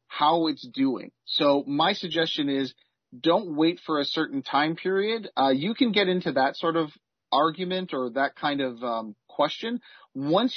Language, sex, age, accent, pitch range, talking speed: English, male, 40-59, American, 140-195 Hz, 170 wpm